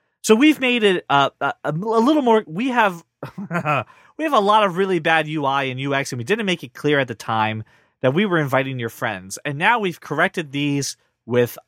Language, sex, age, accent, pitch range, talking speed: English, male, 30-49, American, 135-210 Hz, 215 wpm